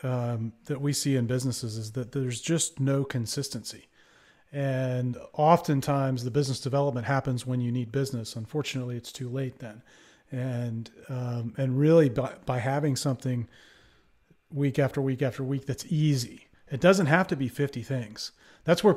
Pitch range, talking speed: 130-155 Hz, 160 wpm